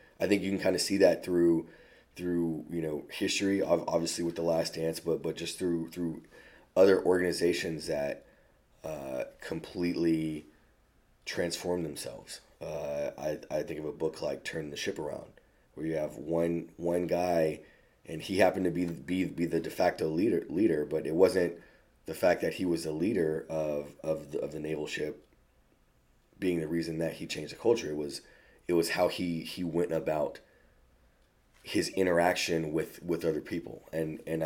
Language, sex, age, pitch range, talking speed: English, male, 30-49, 80-90 Hz, 180 wpm